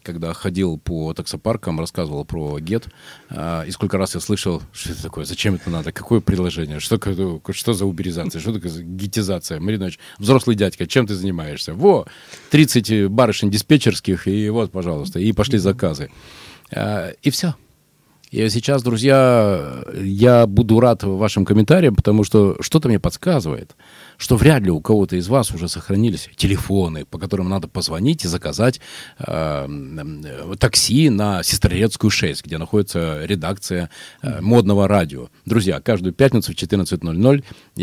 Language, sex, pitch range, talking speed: Russian, male, 85-110 Hz, 150 wpm